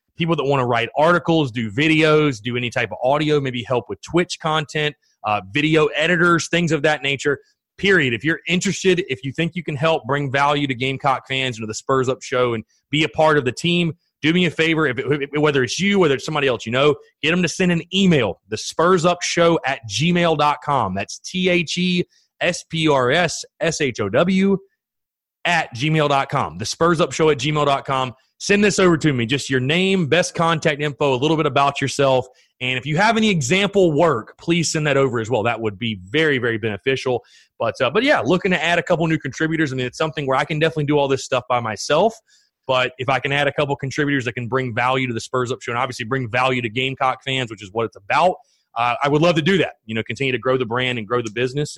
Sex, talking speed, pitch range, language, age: male, 225 wpm, 130-165 Hz, English, 30-49